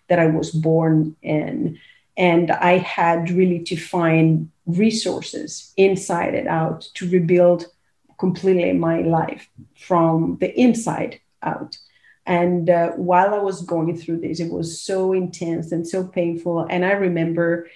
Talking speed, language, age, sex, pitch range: 140 wpm, English, 40-59, female, 170-185 Hz